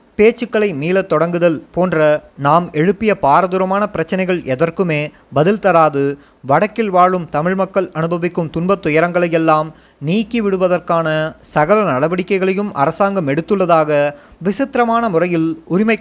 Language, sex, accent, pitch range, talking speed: Tamil, male, native, 155-200 Hz, 95 wpm